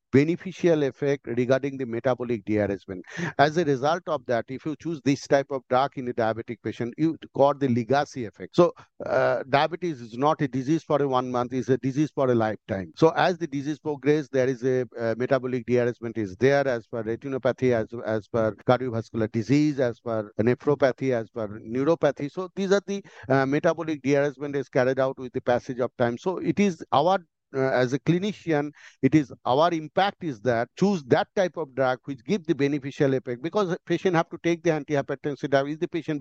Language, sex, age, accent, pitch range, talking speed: English, male, 50-69, Indian, 125-155 Hz, 200 wpm